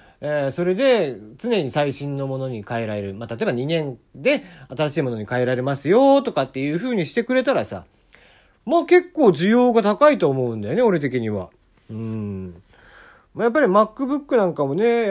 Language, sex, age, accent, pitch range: Japanese, male, 40-59, native, 135-220 Hz